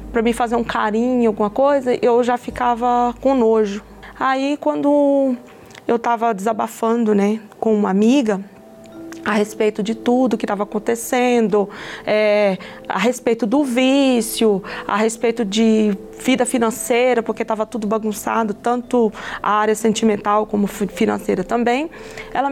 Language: Portuguese